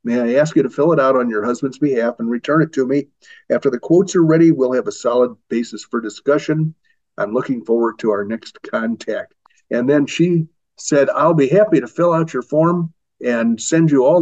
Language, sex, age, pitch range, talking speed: English, male, 50-69, 125-160 Hz, 220 wpm